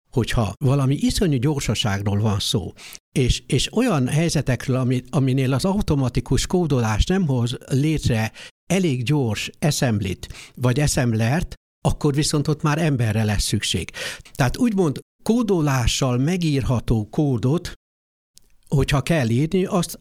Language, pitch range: Hungarian, 115-155 Hz